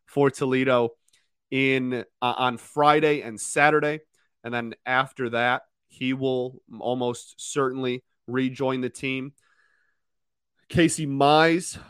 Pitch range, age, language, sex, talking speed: 110-135 Hz, 30-49, English, male, 105 wpm